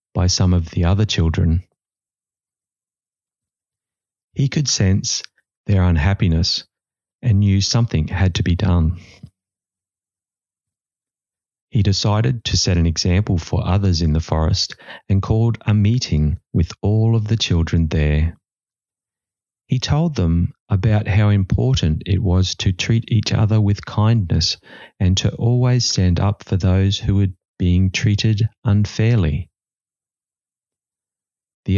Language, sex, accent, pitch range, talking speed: English, male, Australian, 90-110 Hz, 125 wpm